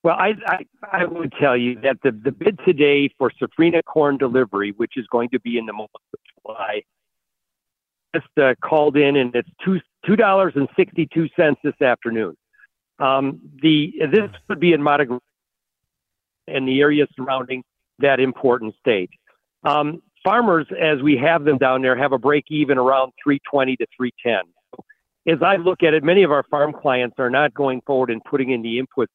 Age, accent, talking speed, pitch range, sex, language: 50-69, American, 175 wpm, 130-160 Hz, male, English